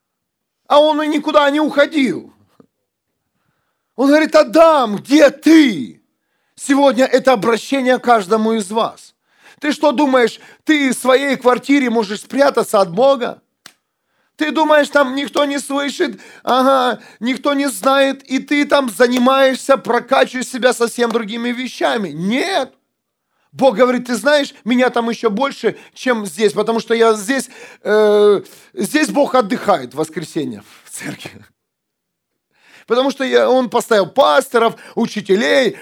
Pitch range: 230-280 Hz